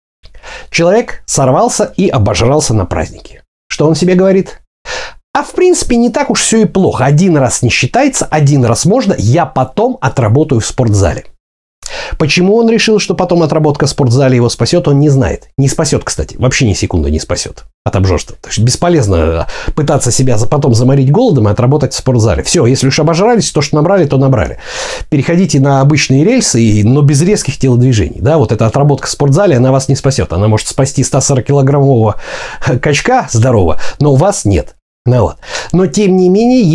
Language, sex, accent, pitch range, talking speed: Russian, male, native, 115-170 Hz, 175 wpm